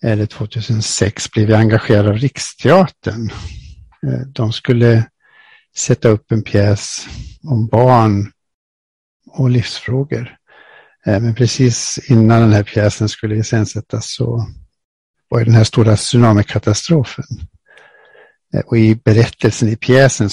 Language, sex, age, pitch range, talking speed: English, male, 60-79, 105-125 Hz, 115 wpm